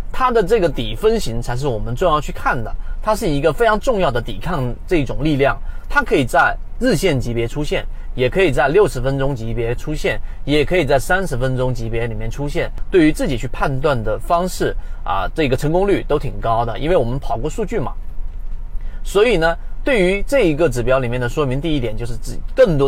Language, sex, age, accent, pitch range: Chinese, male, 30-49, native, 120-175 Hz